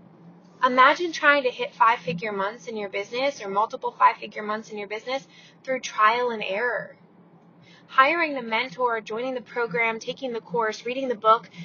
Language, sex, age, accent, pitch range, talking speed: English, female, 20-39, American, 185-245 Hz, 165 wpm